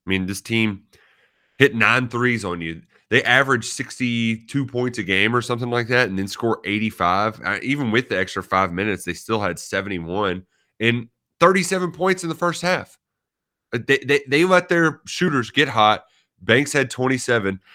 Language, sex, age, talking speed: English, male, 30-49, 170 wpm